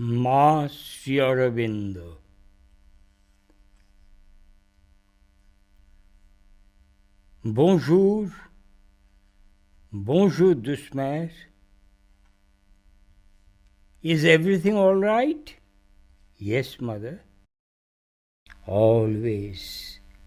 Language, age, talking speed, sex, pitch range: English, 60-79, 35 wpm, male, 100-145 Hz